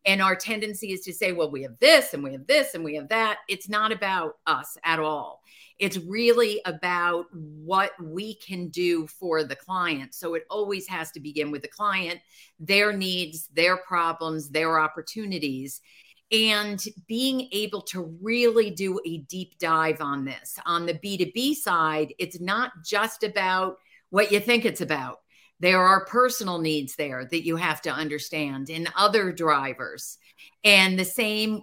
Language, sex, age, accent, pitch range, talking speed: English, female, 50-69, American, 160-205 Hz, 170 wpm